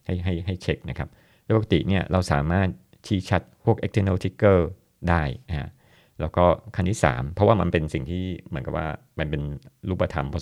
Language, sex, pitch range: Thai, male, 80-100 Hz